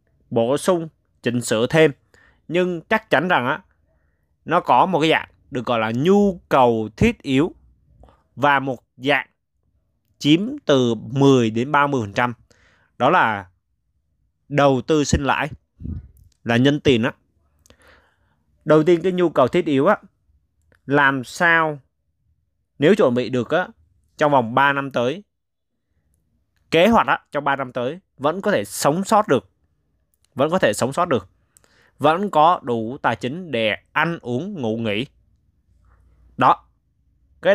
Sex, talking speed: male, 145 wpm